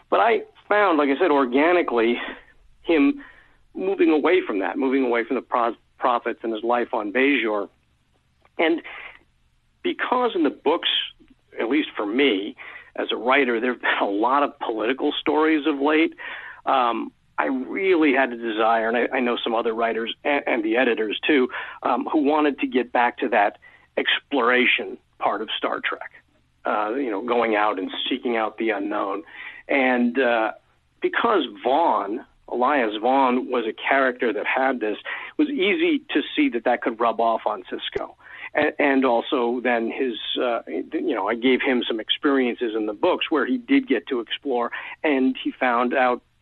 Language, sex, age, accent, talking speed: English, male, 50-69, American, 175 wpm